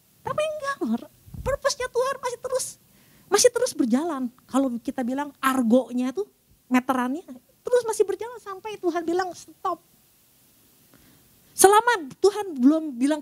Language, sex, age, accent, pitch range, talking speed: Indonesian, female, 40-59, native, 195-330 Hz, 120 wpm